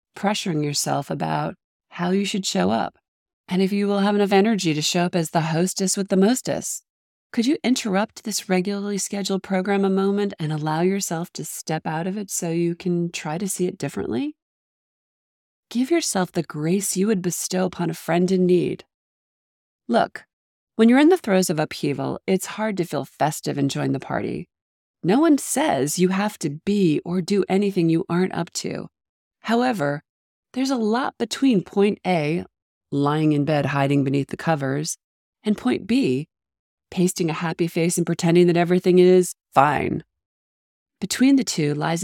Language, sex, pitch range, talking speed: English, female, 155-200 Hz, 175 wpm